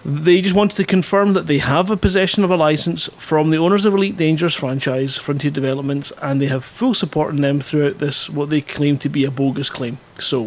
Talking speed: 230 wpm